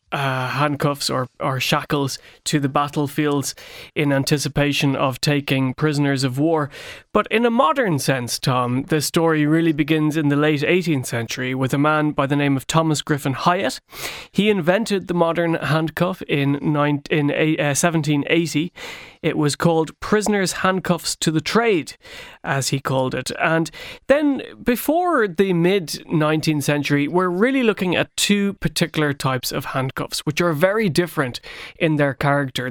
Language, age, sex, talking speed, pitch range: English, 30-49, male, 160 wpm, 145-175 Hz